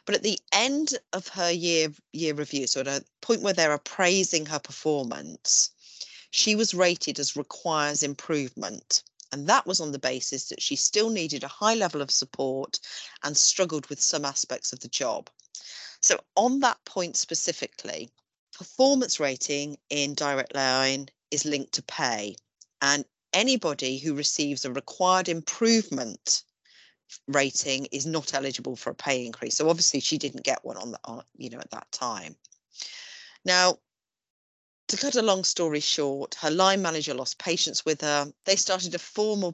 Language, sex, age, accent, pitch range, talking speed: English, female, 40-59, British, 140-185 Hz, 160 wpm